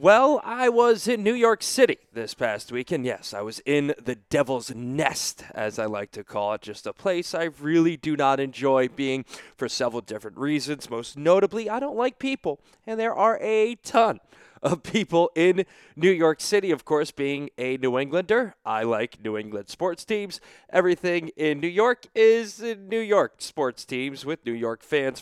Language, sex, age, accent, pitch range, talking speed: English, male, 20-39, American, 120-180 Hz, 190 wpm